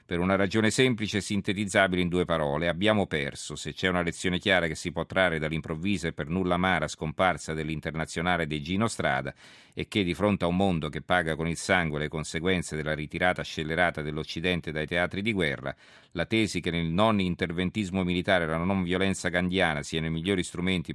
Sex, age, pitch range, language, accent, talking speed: male, 40-59, 80-95 Hz, Italian, native, 195 wpm